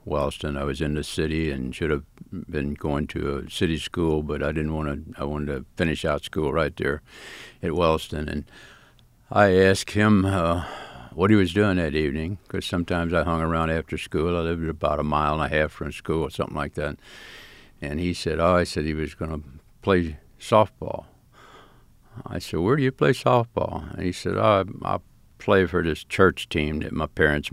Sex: male